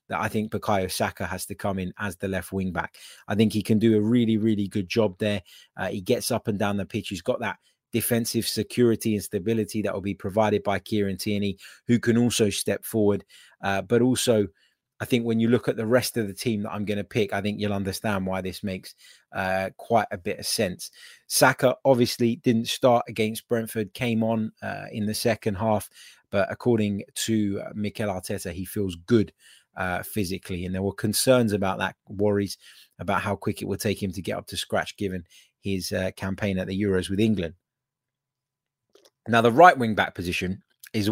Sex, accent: male, British